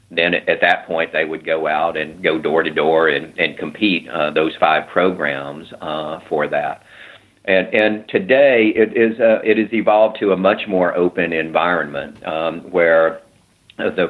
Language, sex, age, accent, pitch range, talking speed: English, male, 50-69, American, 80-95 Hz, 175 wpm